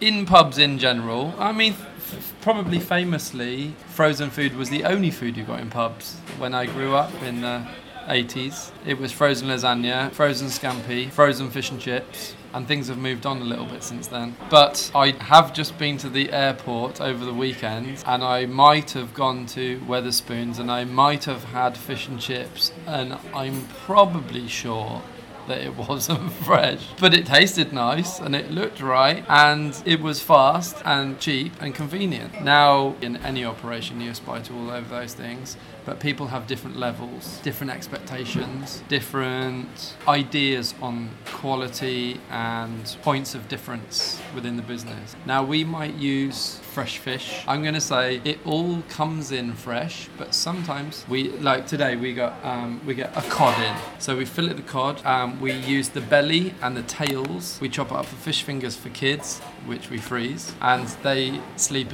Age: 20-39